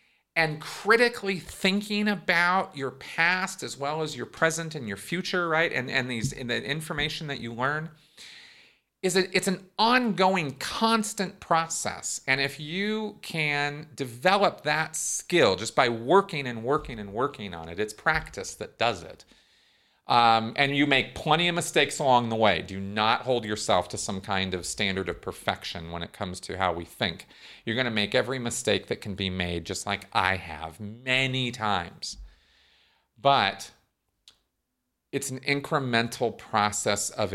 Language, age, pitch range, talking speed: English, 40-59, 105-155 Hz, 165 wpm